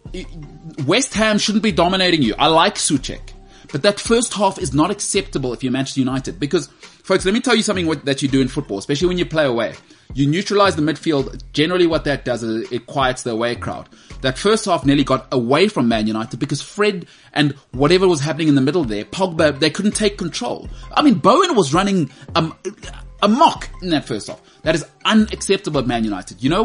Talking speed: 215 wpm